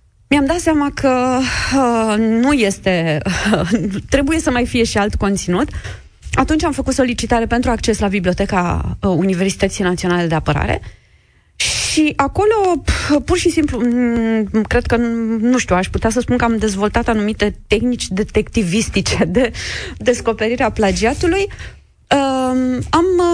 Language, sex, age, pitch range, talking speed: Romanian, female, 30-49, 195-270 Hz, 130 wpm